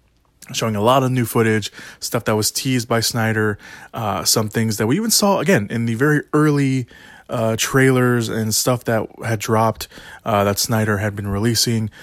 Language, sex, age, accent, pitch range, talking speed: English, male, 20-39, American, 105-125 Hz, 185 wpm